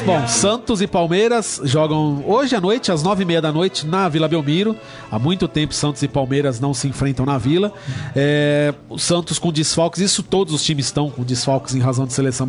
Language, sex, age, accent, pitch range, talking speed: Portuguese, male, 40-59, Brazilian, 150-210 Hz, 200 wpm